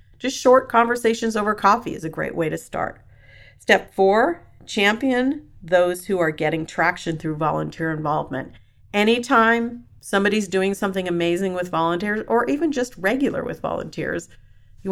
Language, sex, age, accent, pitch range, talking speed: English, female, 40-59, American, 160-195 Hz, 145 wpm